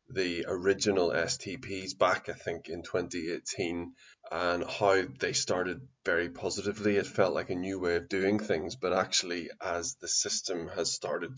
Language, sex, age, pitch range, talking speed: English, male, 20-39, 95-110 Hz, 160 wpm